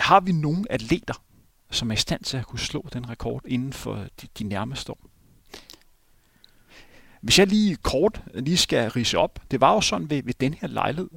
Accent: native